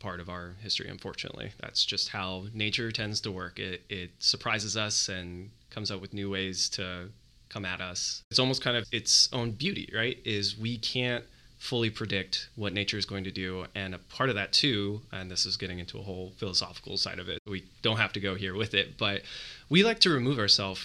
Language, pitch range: English, 100-120 Hz